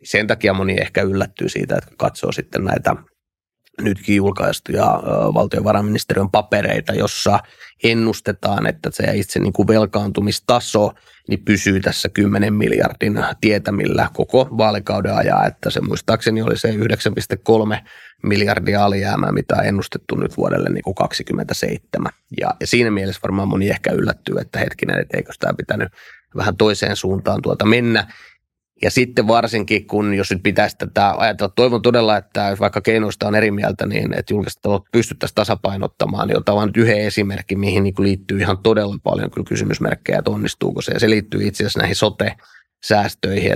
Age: 30-49